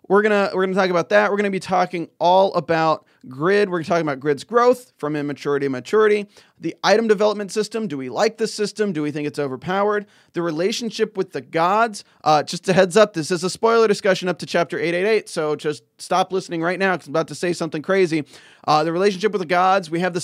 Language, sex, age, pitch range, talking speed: English, male, 30-49, 155-210 Hz, 245 wpm